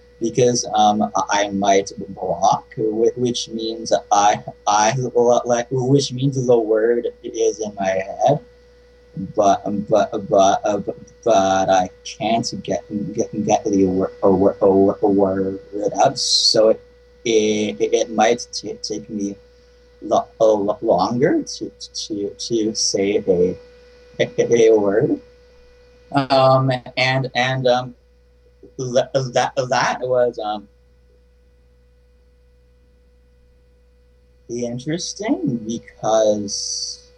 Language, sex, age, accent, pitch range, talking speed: English, male, 30-49, American, 95-140 Hz, 100 wpm